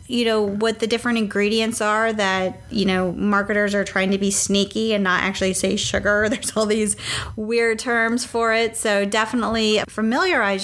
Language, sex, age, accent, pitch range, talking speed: English, female, 30-49, American, 195-225 Hz, 175 wpm